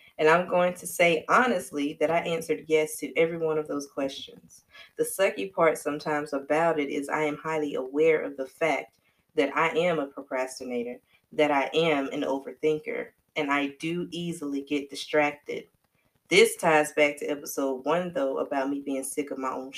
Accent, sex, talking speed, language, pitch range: American, female, 180 wpm, English, 140-170 Hz